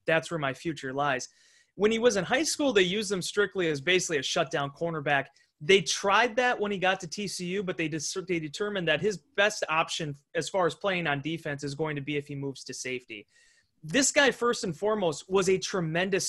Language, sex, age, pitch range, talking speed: English, male, 30-49, 160-220 Hz, 215 wpm